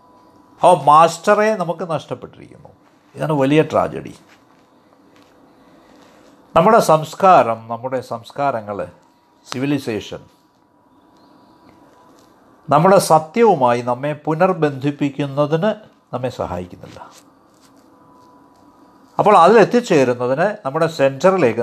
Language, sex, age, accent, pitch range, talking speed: Malayalam, male, 50-69, native, 125-190 Hz, 60 wpm